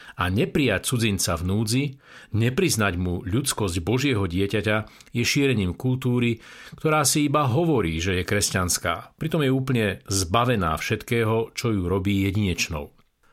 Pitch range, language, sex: 105-130 Hz, Slovak, male